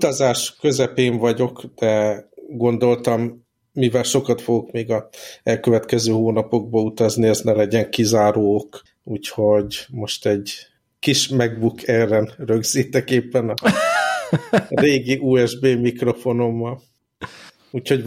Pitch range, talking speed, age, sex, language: 110-120 Hz, 100 wpm, 50-69, male, Hungarian